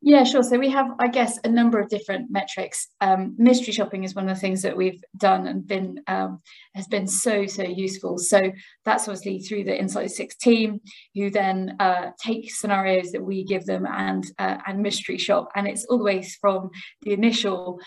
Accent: British